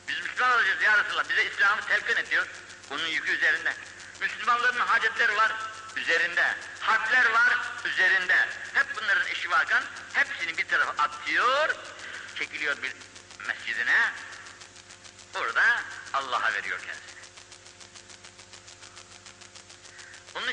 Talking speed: 95 wpm